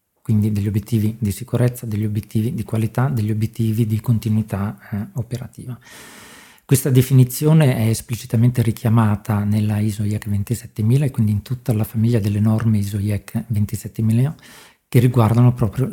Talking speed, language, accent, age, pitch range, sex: 145 wpm, Italian, native, 40-59, 110-125 Hz, male